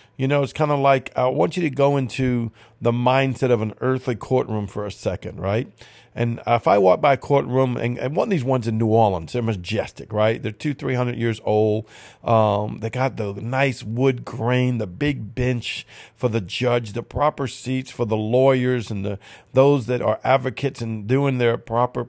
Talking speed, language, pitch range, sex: 205 wpm, English, 115-135 Hz, male